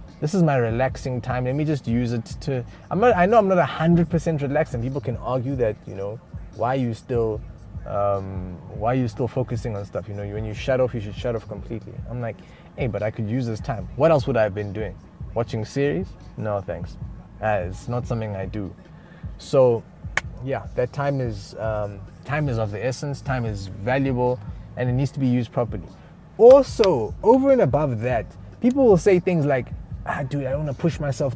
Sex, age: male, 20-39